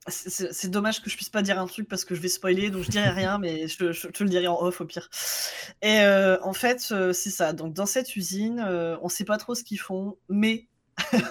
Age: 20-39